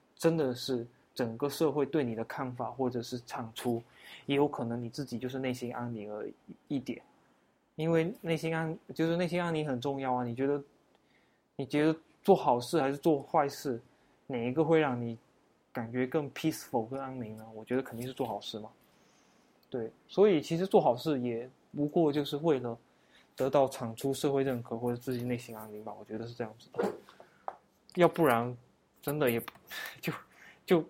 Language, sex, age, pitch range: Chinese, male, 20-39, 120-155 Hz